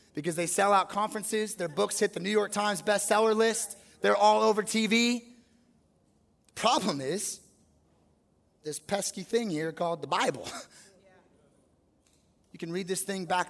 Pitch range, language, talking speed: 170-235 Hz, English, 145 wpm